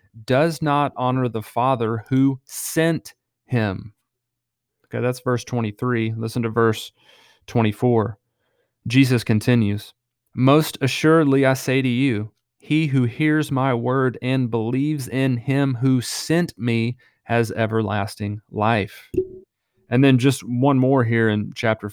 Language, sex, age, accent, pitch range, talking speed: English, male, 30-49, American, 110-130 Hz, 130 wpm